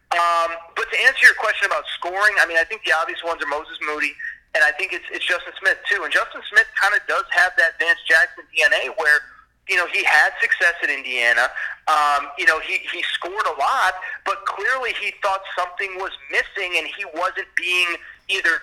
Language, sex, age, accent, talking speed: English, male, 30-49, American, 210 wpm